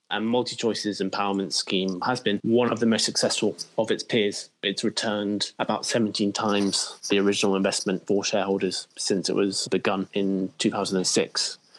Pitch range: 100-115 Hz